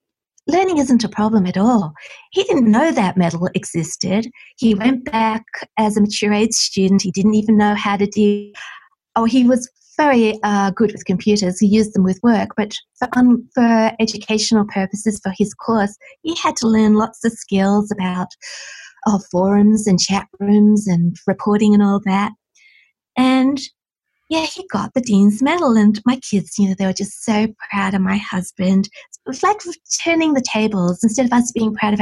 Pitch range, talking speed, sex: 200-240 Hz, 185 wpm, female